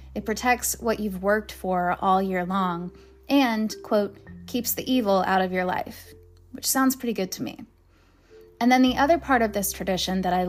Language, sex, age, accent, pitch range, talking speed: English, female, 10-29, American, 180-250 Hz, 195 wpm